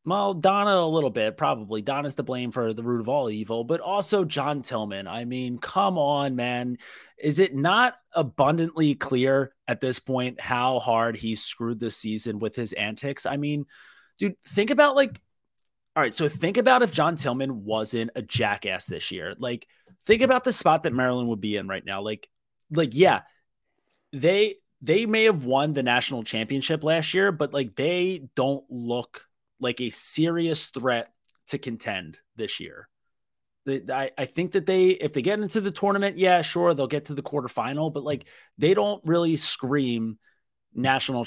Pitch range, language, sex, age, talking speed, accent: 120-165 Hz, English, male, 30-49, 175 wpm, American